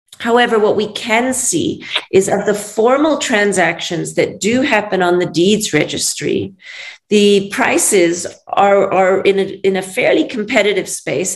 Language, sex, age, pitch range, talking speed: English, female, 40-59, 180-225 Hz, 145 wpm